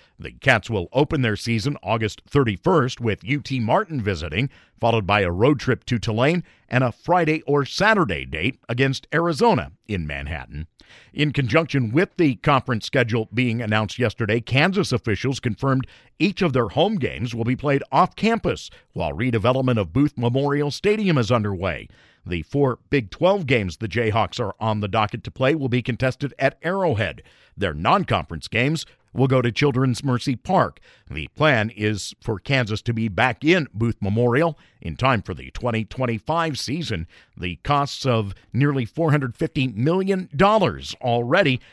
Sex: male